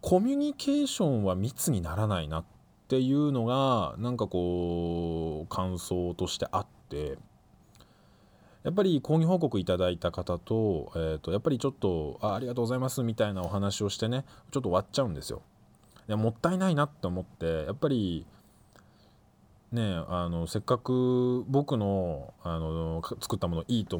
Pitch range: 85-125 Hz